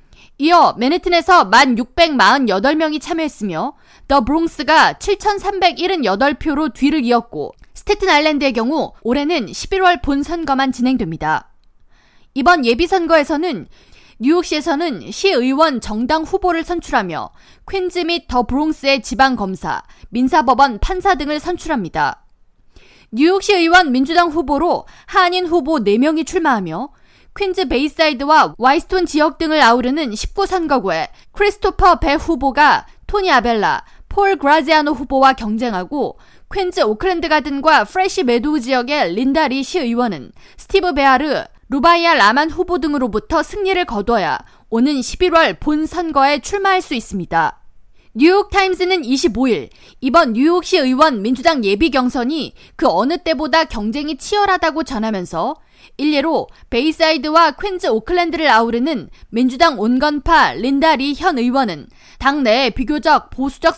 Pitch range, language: 260-340 Hz, Korean